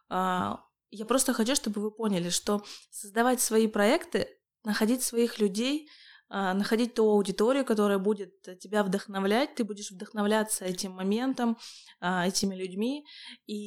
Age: 20-39